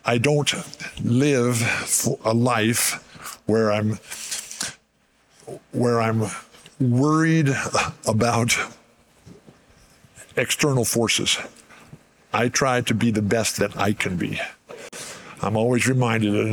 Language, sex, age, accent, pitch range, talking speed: English, male, 50-69, American, 110-140 Hz, 90 wpm